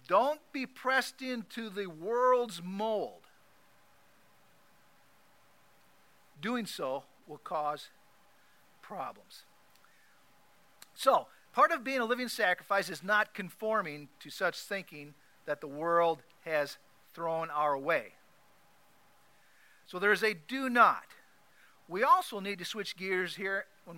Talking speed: 115 wpm